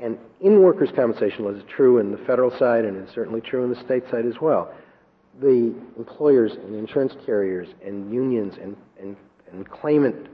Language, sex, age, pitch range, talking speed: English, male, 50-69, 95-130 Hz, 185 wpm